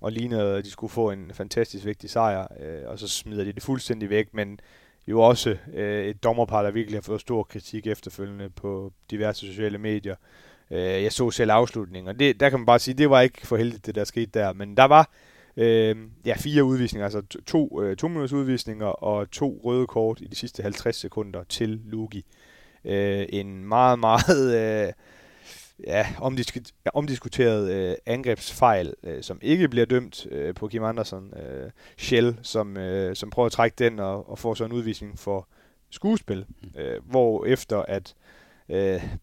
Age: 30-49